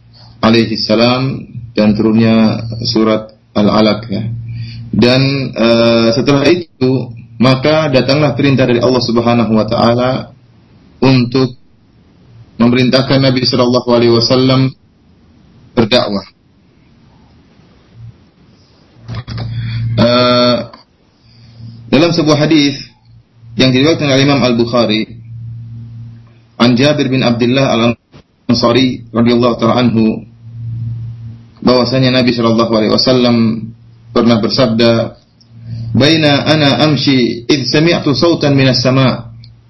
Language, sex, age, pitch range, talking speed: Malay, male, 30-49, 115-130 Hz, 85 wpm